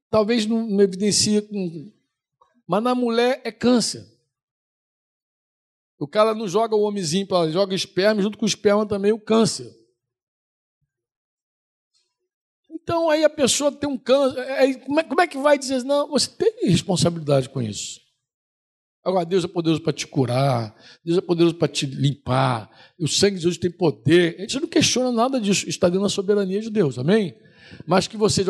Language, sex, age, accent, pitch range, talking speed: Portuguese, male, 60-79, Brazilian, 160-225 Hz, 180 wpm